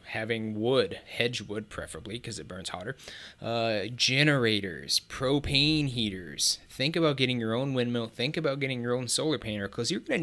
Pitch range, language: 110-145 Hz, English